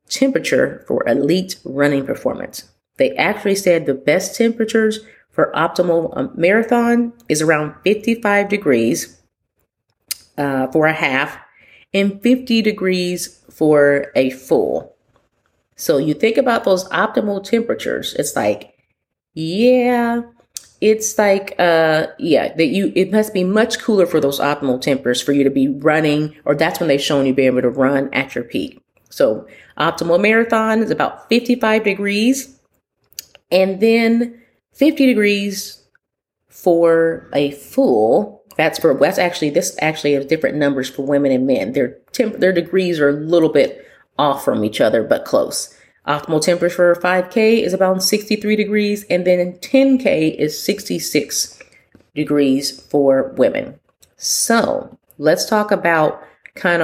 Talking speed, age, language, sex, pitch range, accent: 140 wpm, 30-49, English, female, 150-220 Hz, American